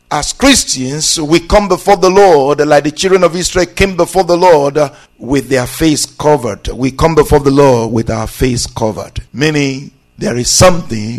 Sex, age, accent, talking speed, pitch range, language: male, 50-69, Nigerian, 180 wpm, 125-170 Hz, English